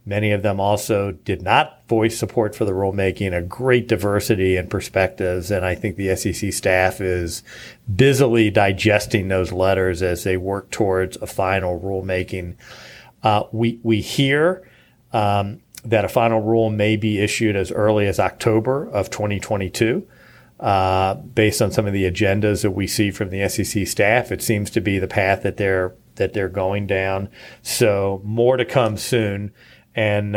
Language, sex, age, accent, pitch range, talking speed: English, male, 40-59, American, 95-115 Hz, 165 wpm